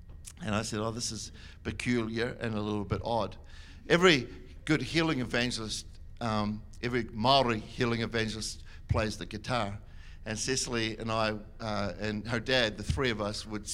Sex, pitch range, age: male, 100-125 Hz, 60-79